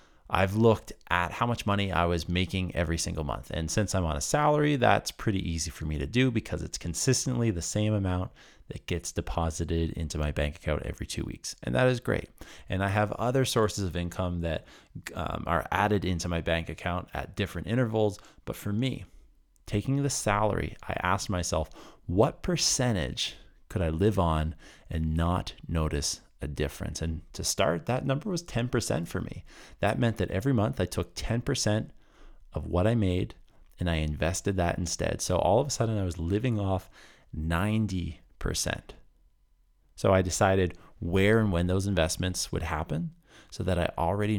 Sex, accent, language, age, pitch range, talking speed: male, American, English, 30-49, 85-110 Hz, 180 wpm